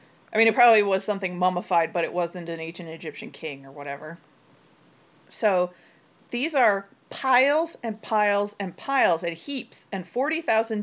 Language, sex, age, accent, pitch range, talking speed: English, female, 30-49, American, 170-225 Hz, 155 wpm